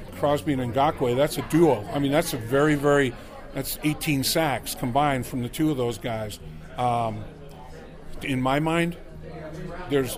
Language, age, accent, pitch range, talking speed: English, 50-69, American, 130-160 Hz, 160 wpm